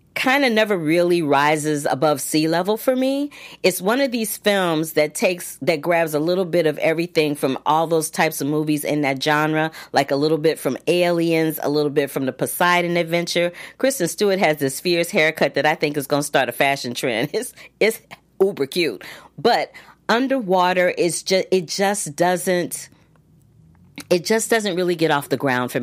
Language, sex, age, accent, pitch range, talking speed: English, female, 40-59, American, 140-170 Hz, 190 wpm